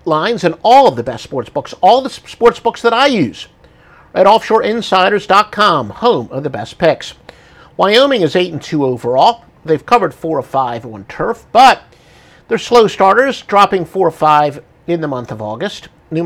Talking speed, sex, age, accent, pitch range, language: 170 wpm, male, 50-69, American, 160-235 Hz, English